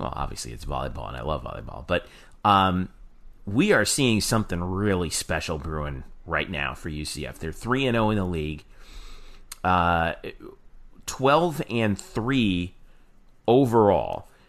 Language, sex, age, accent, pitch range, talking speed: English, male, 40-59, American, 90-120 Hz, 135 wpm